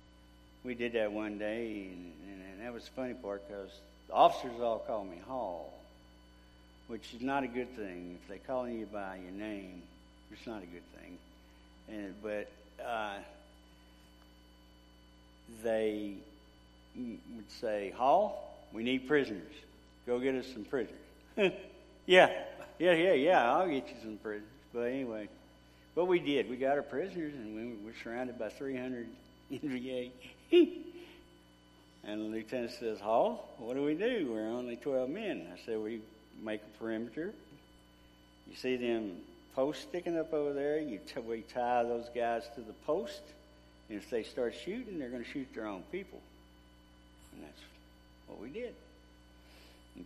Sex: male